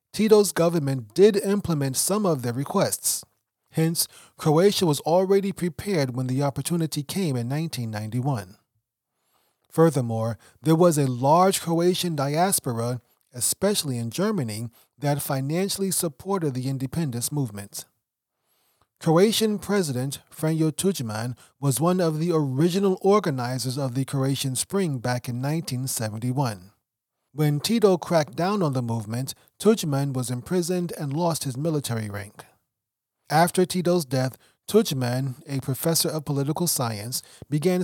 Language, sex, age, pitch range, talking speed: English, male, 30-49, 130-175 Hz, 120 wpm